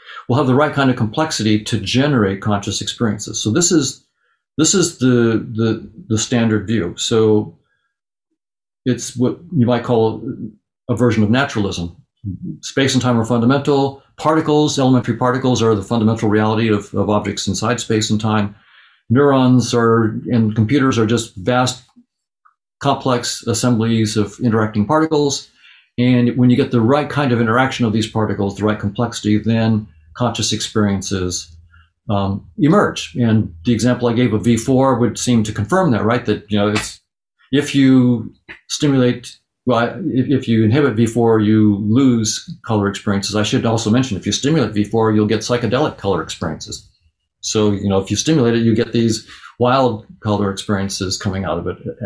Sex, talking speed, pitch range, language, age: male, 165 wpm, 105-125 Hz, English, 50-69